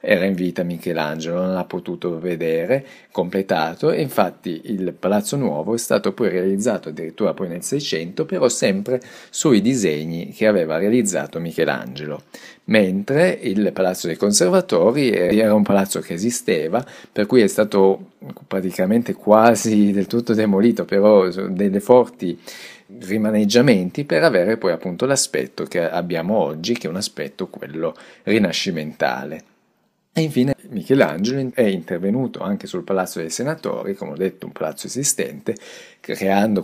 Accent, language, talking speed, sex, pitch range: native, Italian, 140 wpm, male, 85-110 Hz